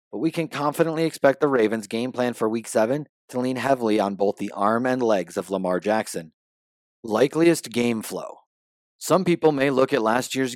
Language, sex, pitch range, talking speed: English, male, 105-125 Hz, 195 wpm